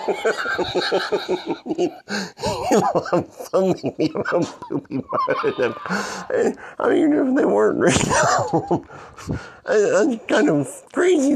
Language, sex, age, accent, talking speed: English, male, 50-69, American, 70 wpm